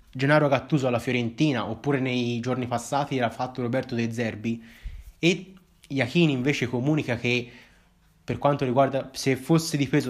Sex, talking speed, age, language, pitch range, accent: male, 145 wpm, 20-39, Italian, 120-150 Hz, native